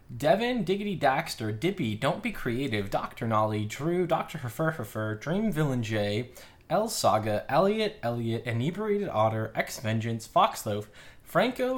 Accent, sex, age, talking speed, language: American, male, 20-39, 135 wpm, English